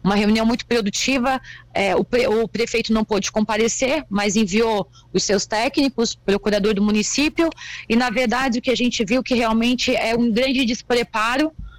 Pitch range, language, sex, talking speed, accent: 220-260 Hz, Portuguese, female, 165 wpm, Brazilian